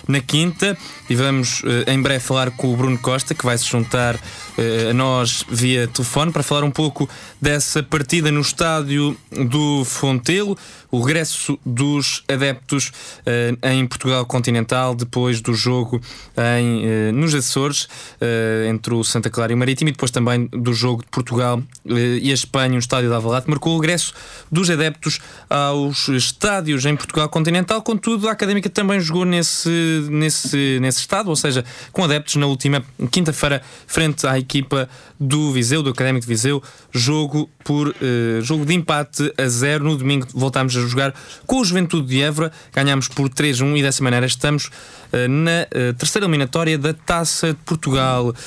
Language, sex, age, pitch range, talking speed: Portuguese, male, 20-39, 125-155 Hz, 170 wpm